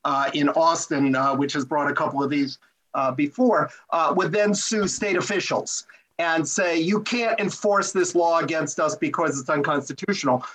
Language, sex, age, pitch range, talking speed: English, male, 50-69, 155-205 Hz, 175 wpm